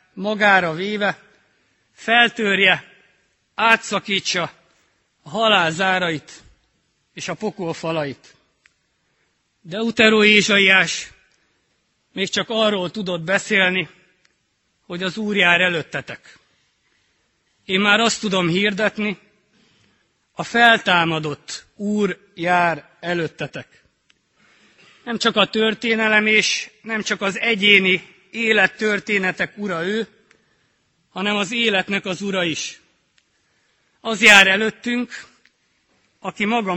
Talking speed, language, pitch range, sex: 90 wpm, Hungarian, 185-220 Hz, male